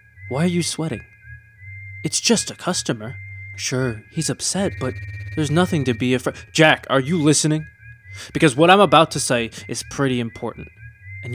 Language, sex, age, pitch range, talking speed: English, male, 20-39, 115-155 Hz, 165 wpm